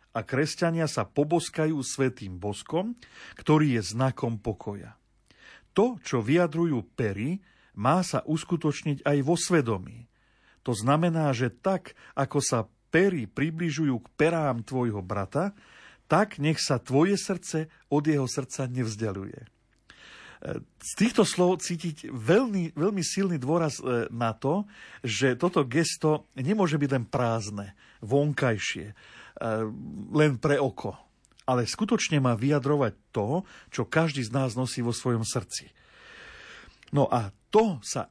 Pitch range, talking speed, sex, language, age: 120-165 Hz, 125 wpm, male, Slovak, 50-69